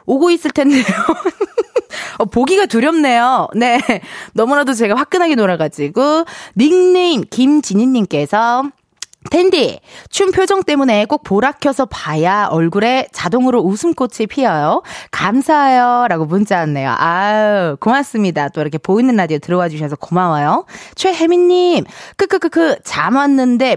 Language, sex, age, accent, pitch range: Korean, female, 20-39, native, 210-330 Hz